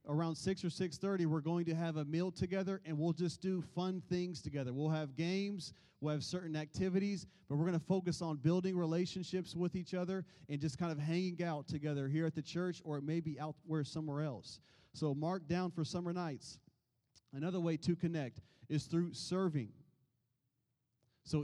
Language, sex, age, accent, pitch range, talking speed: English, male, 30-49, American, 145-175 Hz, 190 wpm